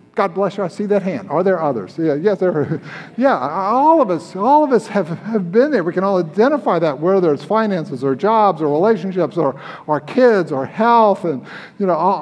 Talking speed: 225 wpm